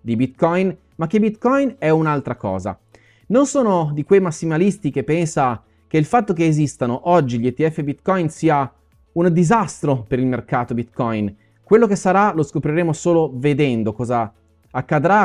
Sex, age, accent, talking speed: male, 30-49, native, 155 wpm